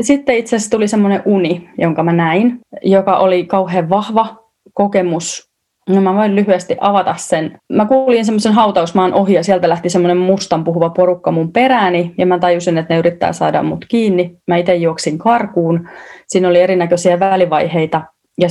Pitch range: 170-195 Hz